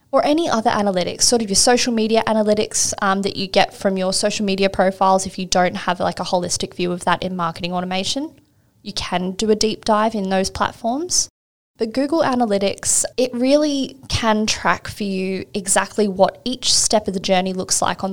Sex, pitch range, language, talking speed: female, 185-220 Hz, English, 200 wpm